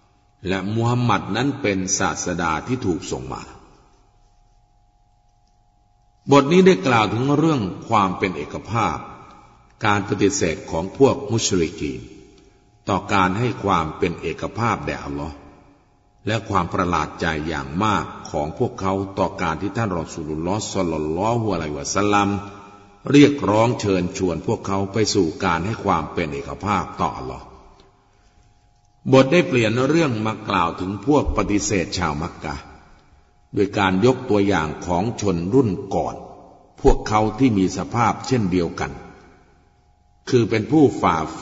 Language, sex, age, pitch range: Thai, male, 60-79, 90-110 Hz